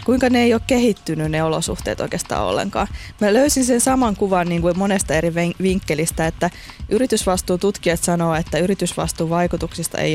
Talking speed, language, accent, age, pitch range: 155 wpm, Finnish, native, 20-39, 160-185 Hz